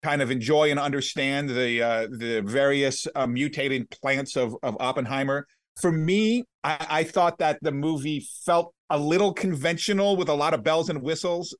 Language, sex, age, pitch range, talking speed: English, male, 40-59, 140-185 Hz, 175 wpm